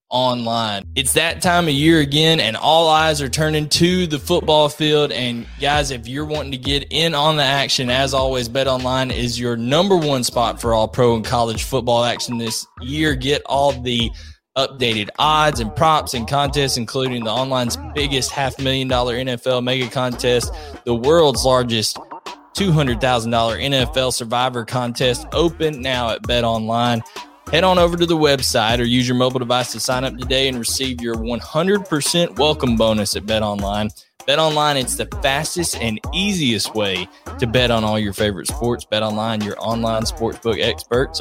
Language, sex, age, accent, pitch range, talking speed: English, male, 20-39, American, 120-145 Hz, 180 wpm